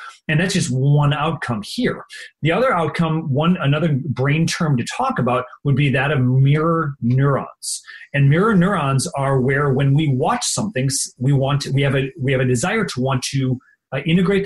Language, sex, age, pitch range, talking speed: English, male, 30-49, 130-175 Hz, 185 wpm